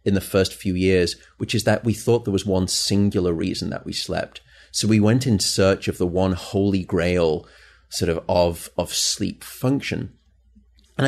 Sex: male